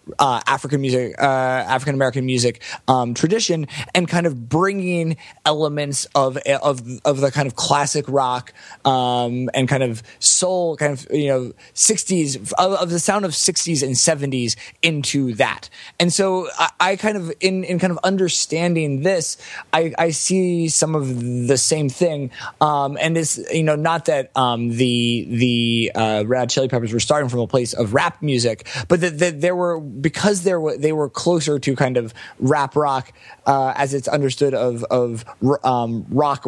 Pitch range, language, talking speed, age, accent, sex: 130-165 Hz, English, 175 wpm, 20-39, American, male